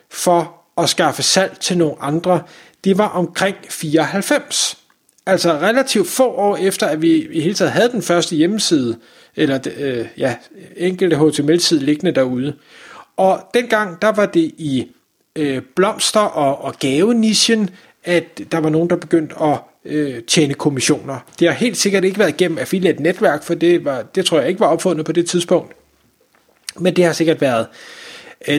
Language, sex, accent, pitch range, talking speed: Danish, male, native, 150-190 Hz, 170 wpm